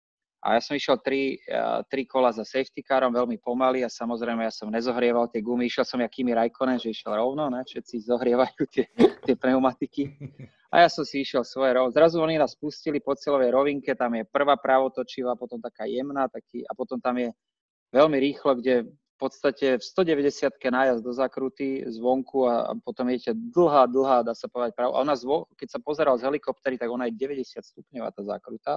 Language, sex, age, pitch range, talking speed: Slovak, male, 20-39, 120-140 Hz, 195 wpm